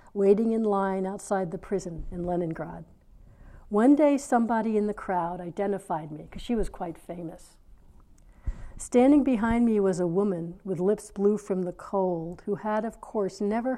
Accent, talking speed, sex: American, 165 wpm, female